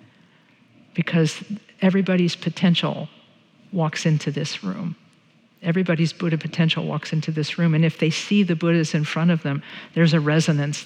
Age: 50-69